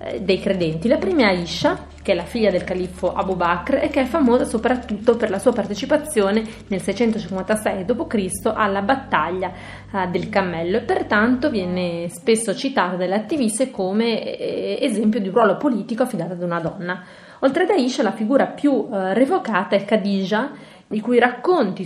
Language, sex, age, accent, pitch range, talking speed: Italian, female, 30-49, native, 190-250 Hz, 160 wpm